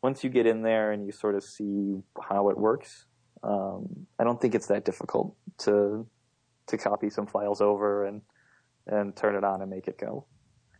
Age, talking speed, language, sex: 30-49, 200 wpm, English, male